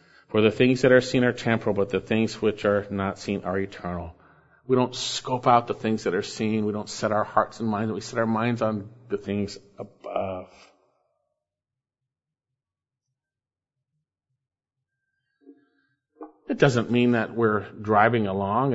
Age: 40-59